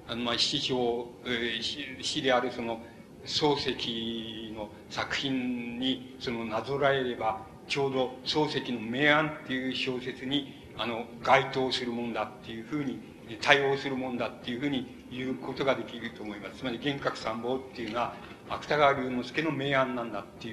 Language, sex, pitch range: Japanese, male, 115-135 Hz